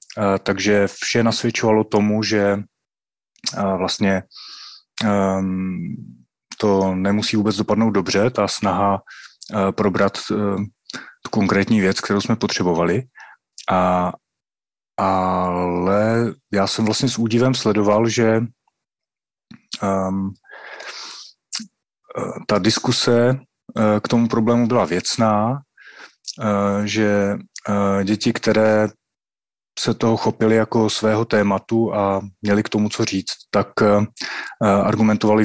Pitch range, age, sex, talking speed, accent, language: 95-110 Hz, 30-49, male, 90 wpm, native, Czech